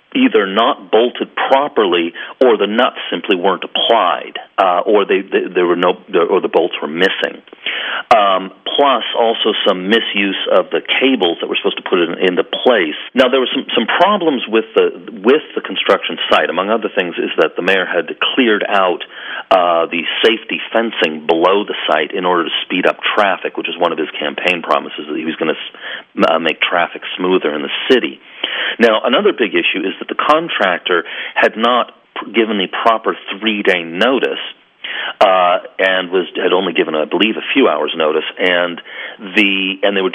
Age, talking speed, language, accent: 40-59, 190 wpm, English, American